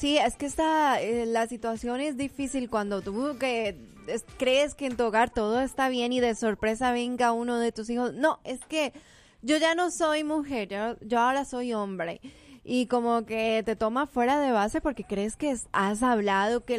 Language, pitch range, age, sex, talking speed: Spanish, 220-270 Hz, 20-39, female, 200 wpm